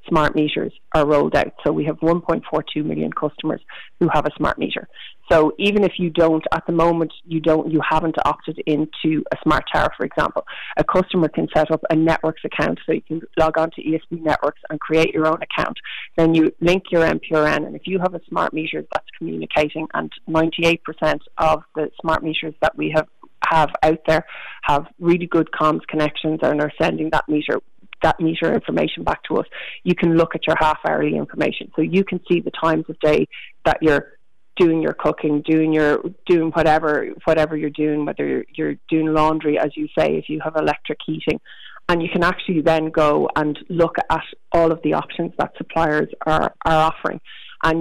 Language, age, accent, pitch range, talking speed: English, 30-49, Irish, 155-165 Hz, 200 wpm